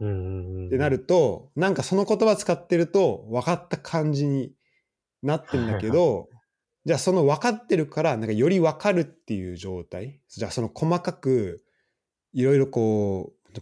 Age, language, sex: 20-39, Japanese, male